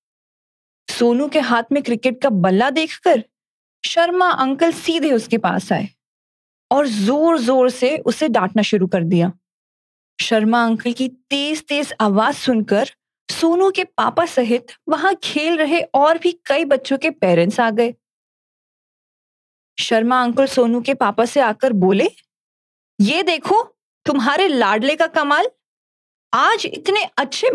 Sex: female